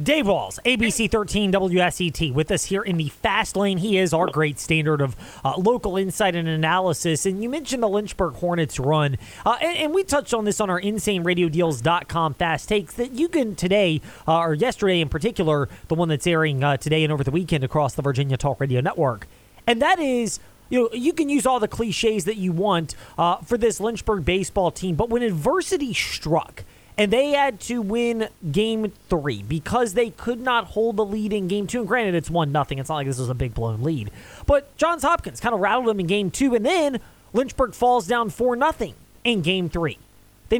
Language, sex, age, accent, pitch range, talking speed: English, male, 30-49, American, 160-235 Hz, 215 wpm